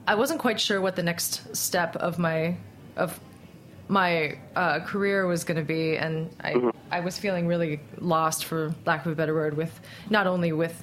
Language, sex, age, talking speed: English, female, 20-39, 195 wpm